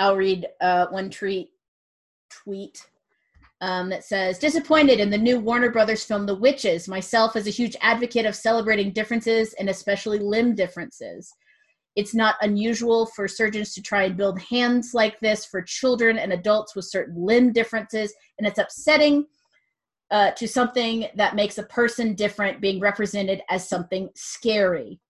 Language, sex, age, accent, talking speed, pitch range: English, female, 30-49, American, 155 wpm, 190-230 Hz